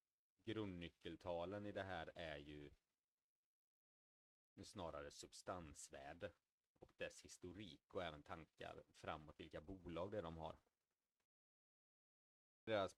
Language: Swedish